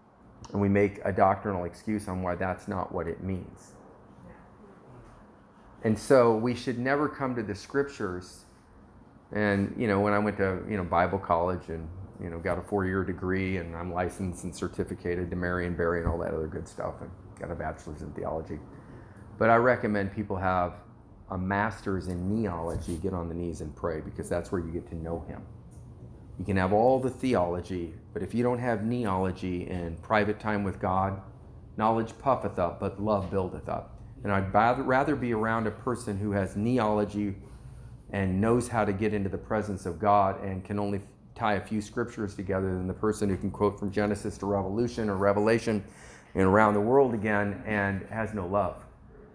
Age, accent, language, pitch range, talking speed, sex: 30-49, American, English, 90-110 Hz, 190 wpm, male